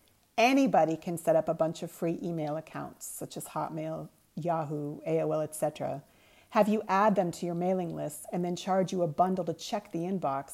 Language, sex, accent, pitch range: English, female, American, 165-200 Hz